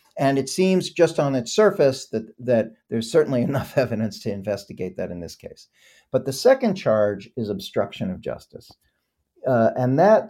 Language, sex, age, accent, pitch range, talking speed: English, male, 50-69, American, 110-145 Hz, 175 wpm